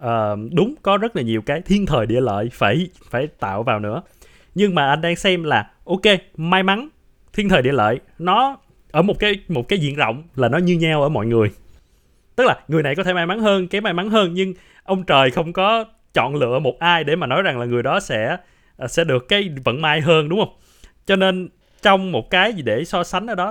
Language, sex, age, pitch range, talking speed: Vietnamese, male, 20-39, 130-185 Hz, 235 wpm